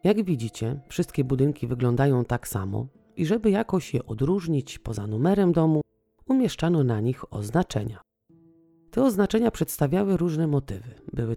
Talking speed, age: 130 wpm, 30-49